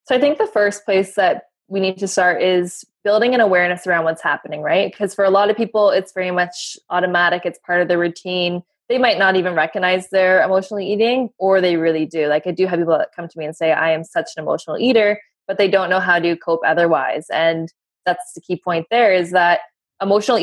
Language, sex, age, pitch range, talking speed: English, female, 20-39, 170-195 Hz, 235 wpm